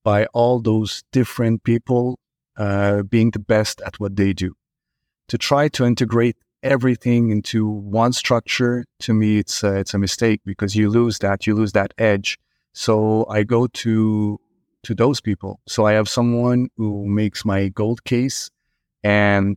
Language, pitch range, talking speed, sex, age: English, 100-120 Hz, 165 wpm, male, 30-49